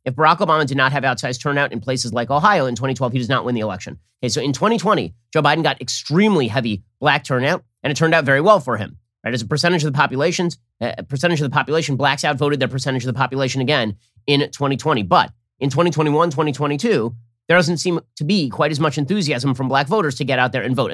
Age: 30-49